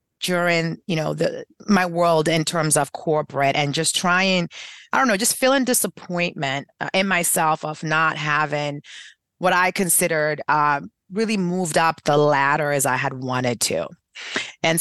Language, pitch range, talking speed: English, 145-200 Hz, 155 wpm